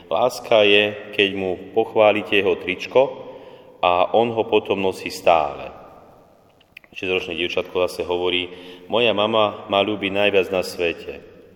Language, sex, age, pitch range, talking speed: Slovak, male, 30-49, 90-120 Hz, 130 wpm